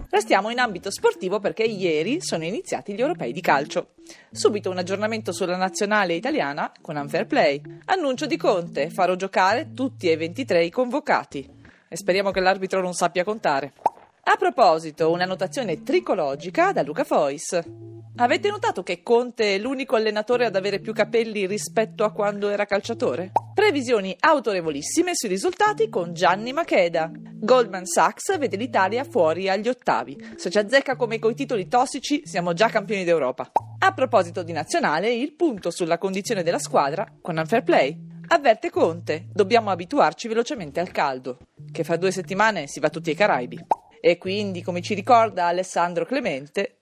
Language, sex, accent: Italian, female, native